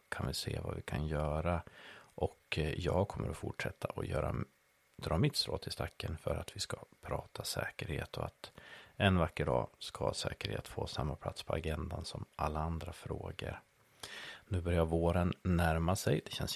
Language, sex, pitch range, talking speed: Swedish, male, 80-95 Hz, 175 wpm